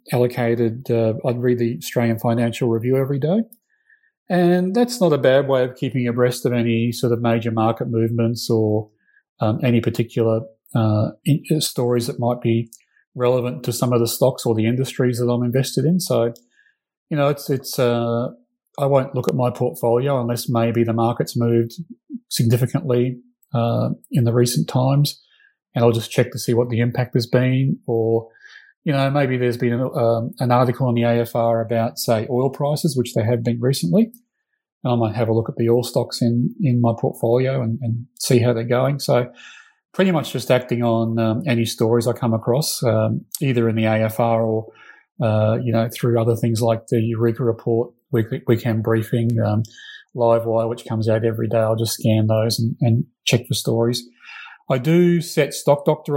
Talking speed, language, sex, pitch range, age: 190 wpm, English, male, 115-135 Hz, 30-49